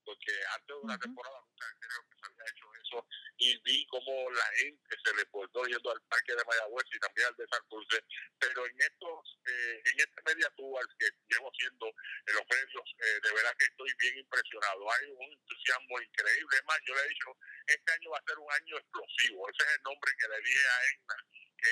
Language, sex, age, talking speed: Spanish, male, 50-69, 215 wpm